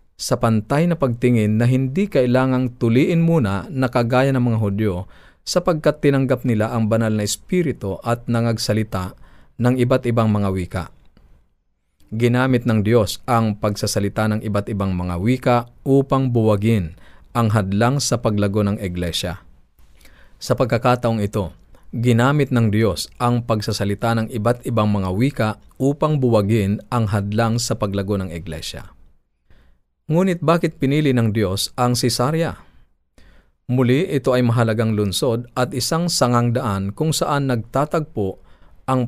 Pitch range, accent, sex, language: 100-130 Hz, native, male, Filipino